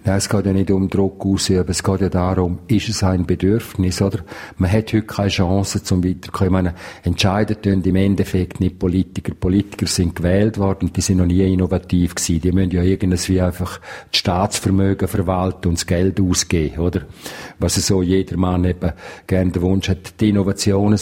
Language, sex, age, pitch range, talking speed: German, male, 50-69, 95-105 Hz, 185 wpm